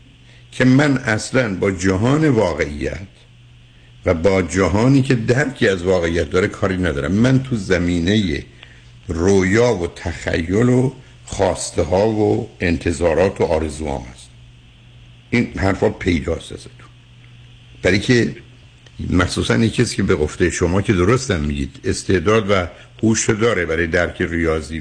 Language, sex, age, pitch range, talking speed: Persian, male, 60-79, 90-120 Hz, 130 wpm